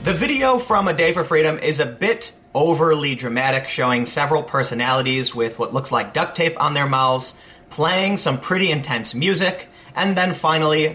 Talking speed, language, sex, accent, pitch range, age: 175 wpm, English, male, American, 125-175 Hz, 30-49